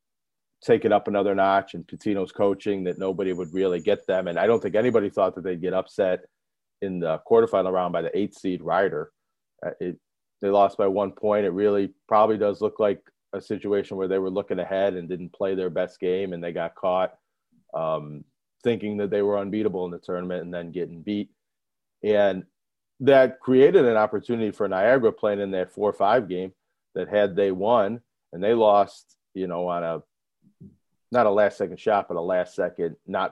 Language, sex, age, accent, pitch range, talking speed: English, male, 40-59, American, 90-105 Hz, 195 wpm